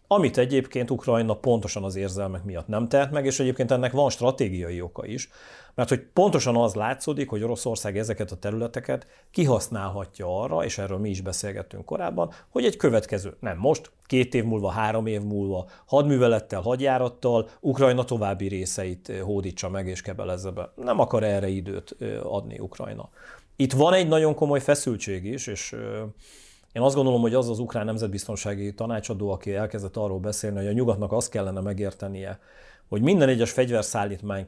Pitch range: 100-125 Hz